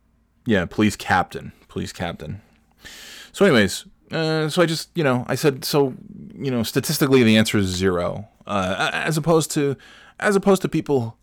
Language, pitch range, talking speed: English, 95-130 Hz, 165 wpm